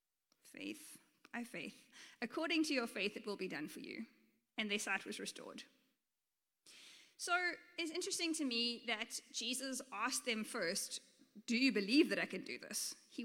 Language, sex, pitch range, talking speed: English, female, 220-295 Hz, 170 wpm